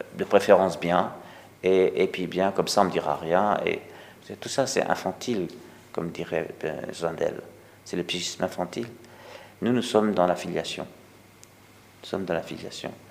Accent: French